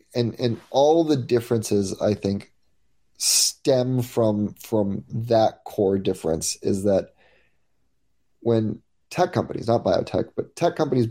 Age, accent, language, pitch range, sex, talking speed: 30-49, American, English, 100-120 Hz, male, 125 wpm